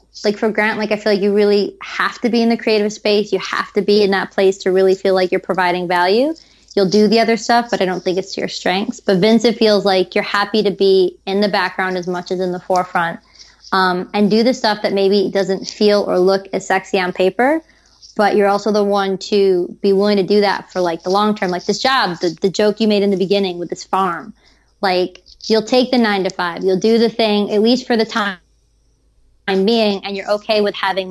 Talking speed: 245 wpm